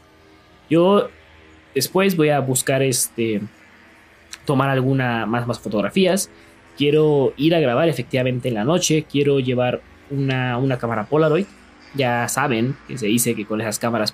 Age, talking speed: 20-39, 145 wpm